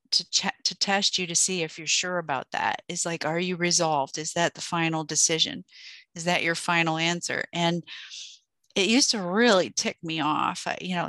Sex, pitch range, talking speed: female, 170-205 Hz, 205 wpm